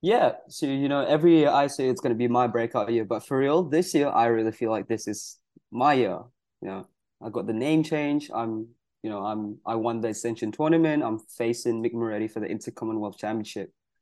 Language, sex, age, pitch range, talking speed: English, male, 20-39, 115-150 Hz, 225 wpm